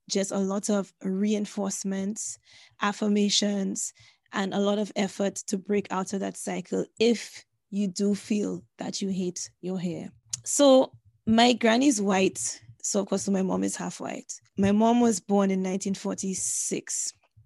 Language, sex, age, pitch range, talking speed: English, female, 20-39, 185-215 Hz, 150 wpm